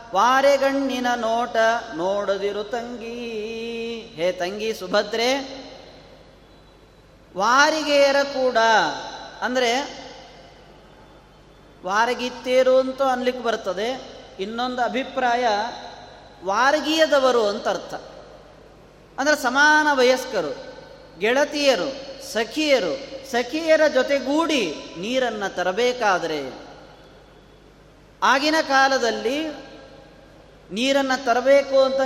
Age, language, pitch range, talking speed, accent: 30-49, Kannada, 225-270 Hz, 60 wpm, native